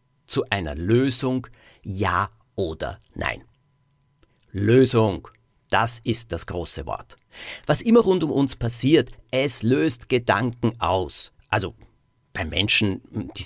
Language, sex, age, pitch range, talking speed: German, male, 50-69, 110-135 Hz, 115 wpm